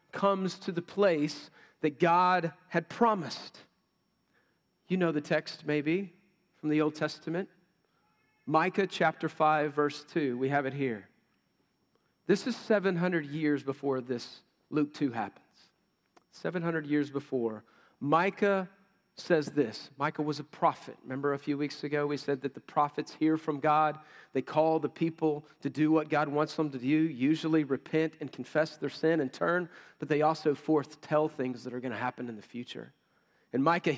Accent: American